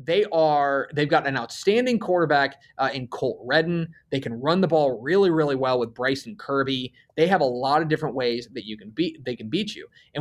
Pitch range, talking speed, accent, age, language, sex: 135-195 Hz, 225 wpm, American, 20-39, English, male